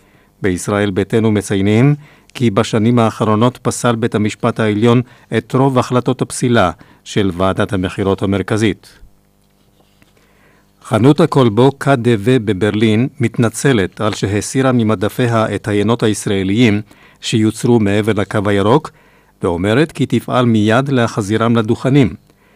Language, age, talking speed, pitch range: Hebrew, 50-69, 105 wpm, 105-125 Hz